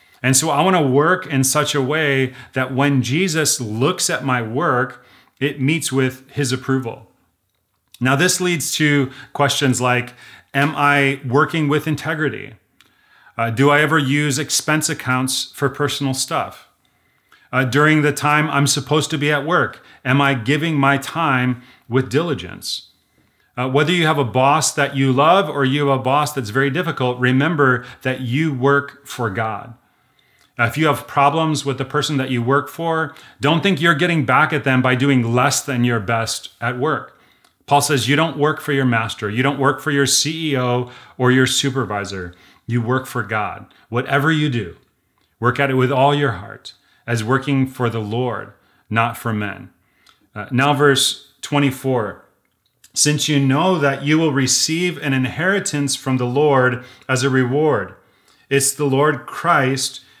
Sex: male